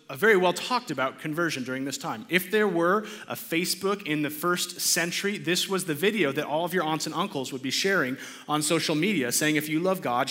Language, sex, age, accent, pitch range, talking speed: English, male, 30-49, American, 140-200 Hz, 220 wpm